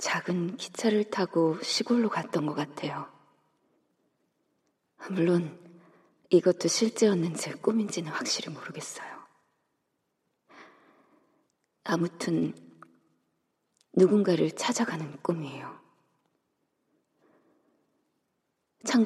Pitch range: 165-200 Hz